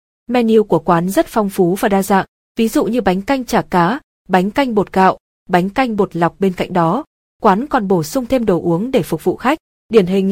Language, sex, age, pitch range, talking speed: Vietnamese, female, 20-39, 180-225 Hz, 235 wpm